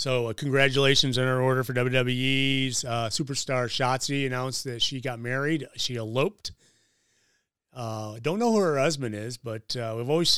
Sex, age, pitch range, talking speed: male, 30-49, 115-135 Hz, 170 wpm